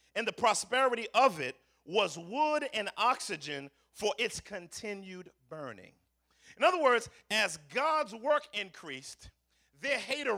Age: 40-59